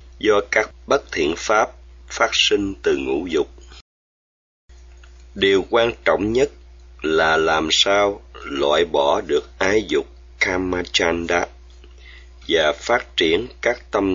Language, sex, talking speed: Vietnamese, male, 120 wpm